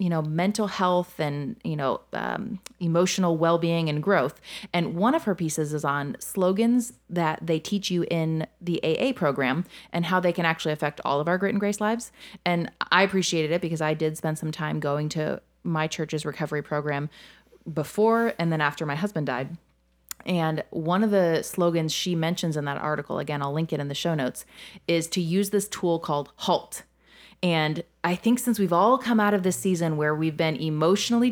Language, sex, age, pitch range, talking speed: English, female, 30-49, 155-200 Hz, 200 wpm